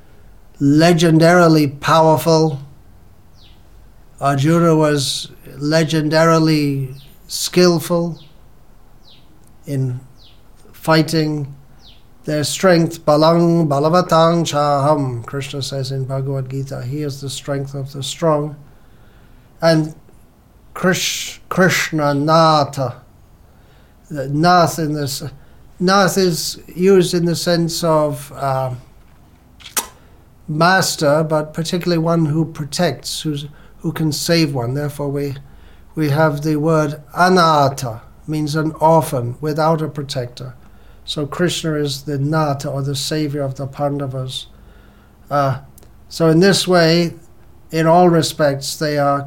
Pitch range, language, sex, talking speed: 135-160 Hz, English, male, 100 wpm